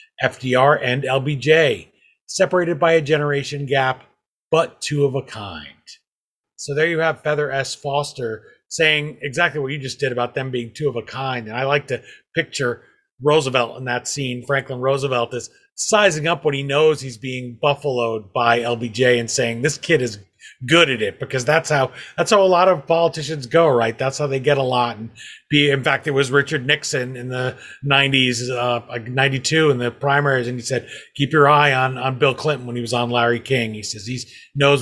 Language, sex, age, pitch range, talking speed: English, male, 30-49, 125-155 Hz, 200 wpm